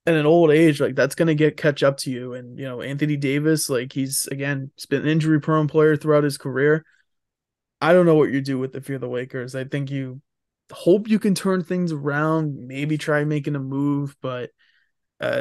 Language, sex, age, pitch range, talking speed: English, male, 20-39, 130-155 Hz, 220 wpm